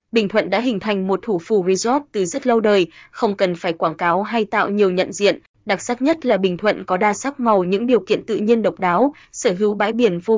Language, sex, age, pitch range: Vietnamese, female, 20-39, 195-235 Hz